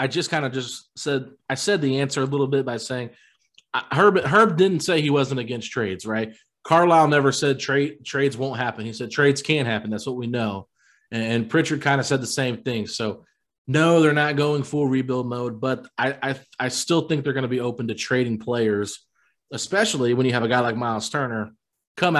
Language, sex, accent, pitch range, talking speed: English, male, American, 115-145 Hz, 215 wpm